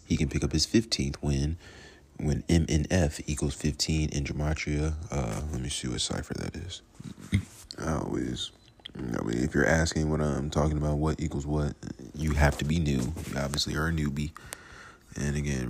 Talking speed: 185 wpm